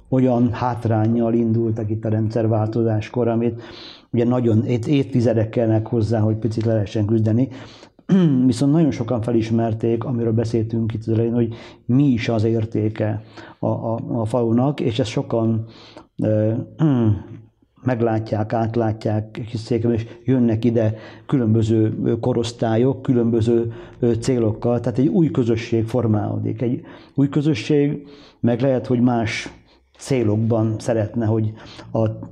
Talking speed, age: 120 wpm, 50-69